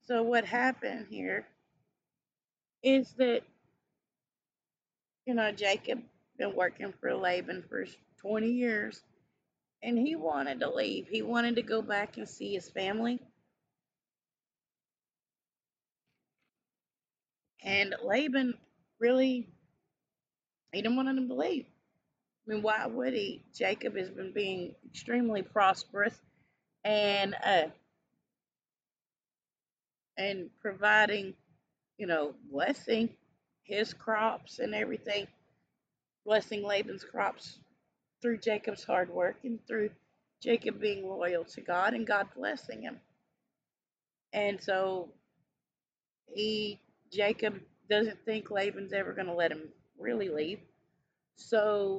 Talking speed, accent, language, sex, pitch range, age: 110 wpm, American, English, female, 195-235 Hz, 30-49